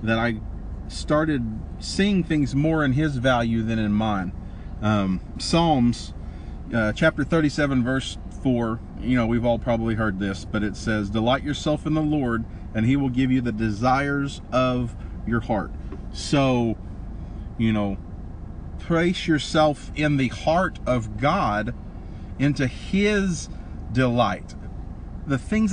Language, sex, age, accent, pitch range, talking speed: English, male, 40-59, American, 105-155 Hz, 140 wpm